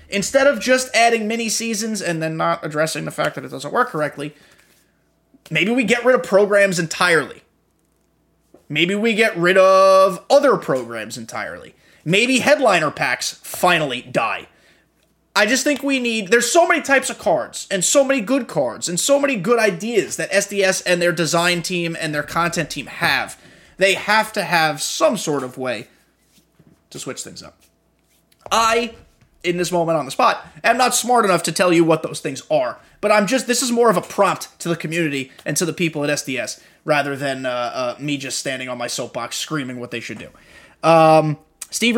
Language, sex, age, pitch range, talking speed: English, male, 20-39, 155-225 Hz, 190 wpm